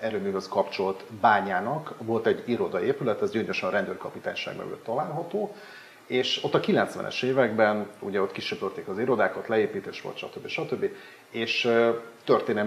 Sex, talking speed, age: male, 135 wpm, 40-59